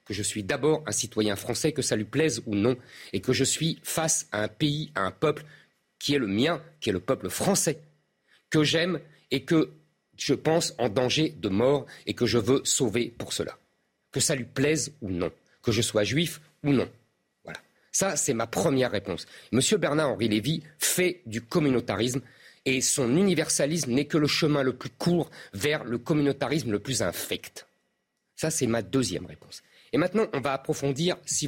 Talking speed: 195 wpm